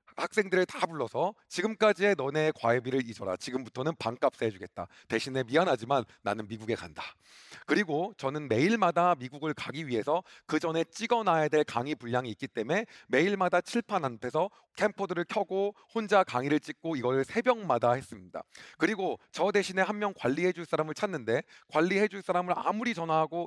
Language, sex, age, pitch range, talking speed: English, male, 40-59, 135-195 Hz, 130 wpm